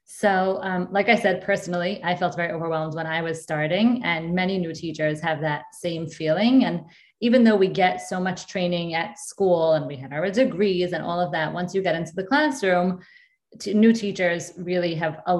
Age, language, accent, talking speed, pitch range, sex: 20-39, English, American, 205 wpm, 165-195 Hz, female